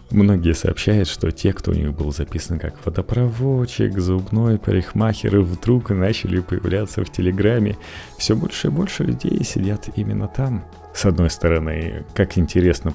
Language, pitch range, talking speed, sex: Russian, 80-100 Hz, 145 wpm, male